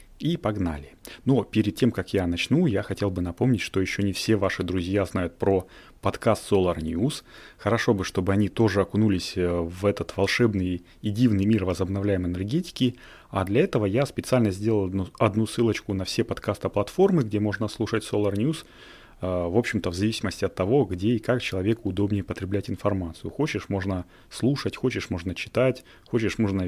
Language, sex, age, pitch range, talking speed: Russian, male, 30-49, 95-110 Hz, 170 wpm